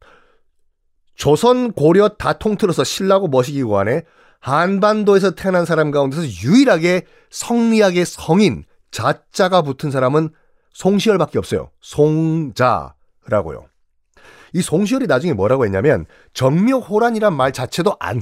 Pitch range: 135-205 Hz